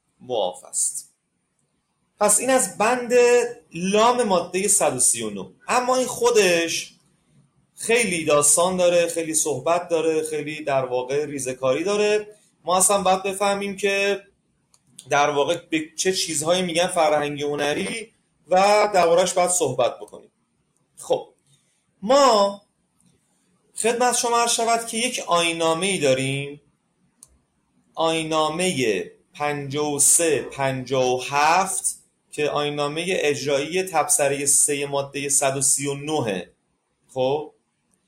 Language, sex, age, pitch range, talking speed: Persian, male, 30-49, 145-210 Hz, 100 wpm